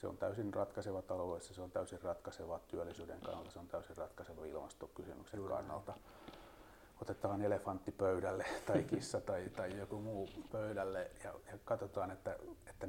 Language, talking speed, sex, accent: Finnish, 150 wpm, male, native